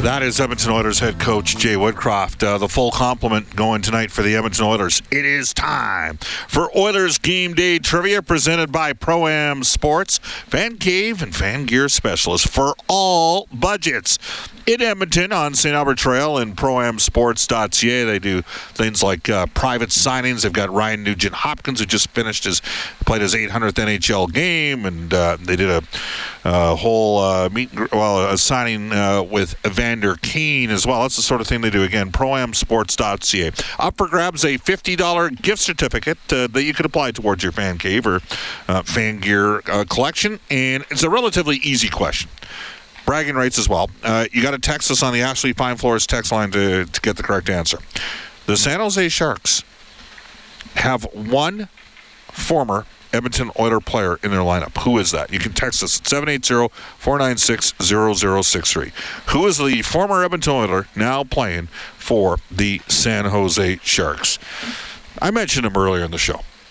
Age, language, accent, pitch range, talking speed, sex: 50-69, English, American, 100-140 Hz, 170 wpm, male